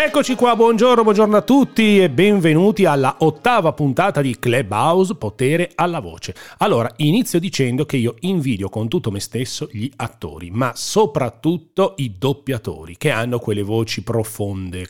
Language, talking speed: Italian, 150 wpm